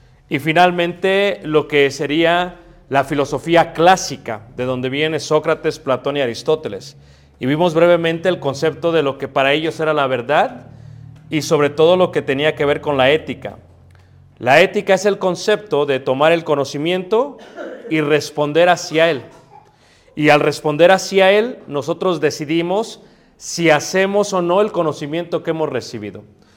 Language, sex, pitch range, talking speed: Spanish, male, 140-175 Hz, 155 wpm